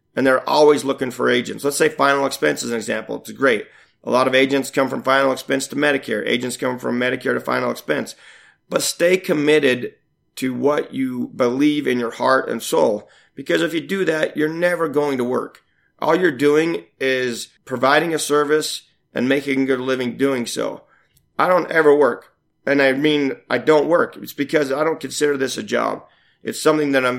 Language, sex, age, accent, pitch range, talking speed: English, male, 30-49, American, 130-155 Hz, 200 wpm